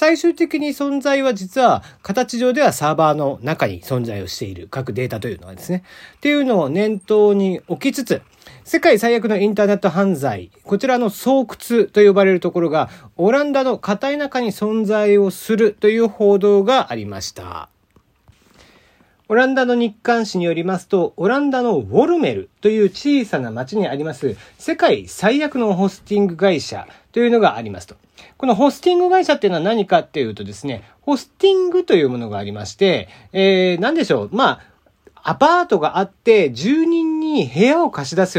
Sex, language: male, Japanese